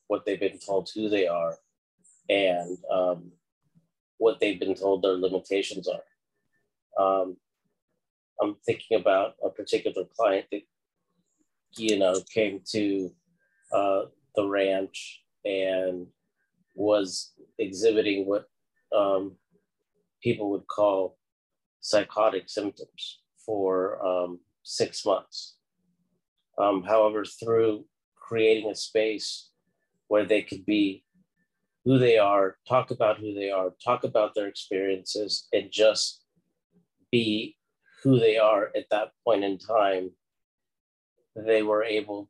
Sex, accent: male, American